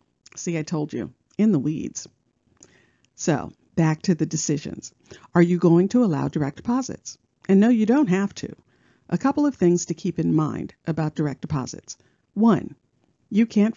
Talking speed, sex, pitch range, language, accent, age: 170 wpm, female, 155-225 Hz, English, American, 50-69